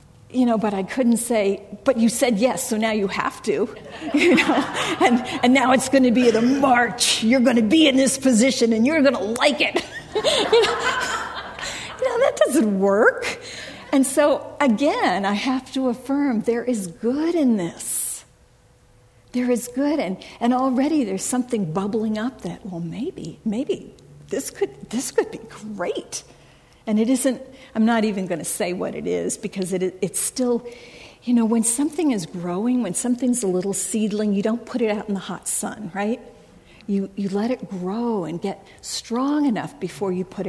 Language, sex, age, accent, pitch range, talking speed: English, female, 50-69, American, 200-260 Hz, 190 wpm